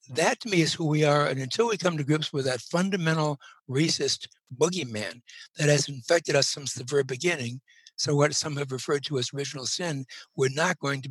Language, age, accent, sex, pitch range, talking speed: English, 60-79, American, male, 130-160 Hz, 210 wpm